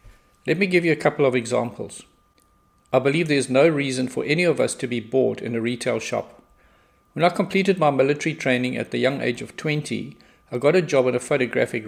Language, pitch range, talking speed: English, 125-160 Hz, 220 wpm